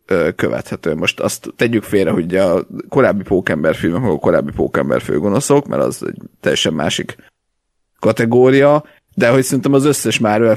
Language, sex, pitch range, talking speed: Hungarian, male, 105-120 Hz, 150 wpm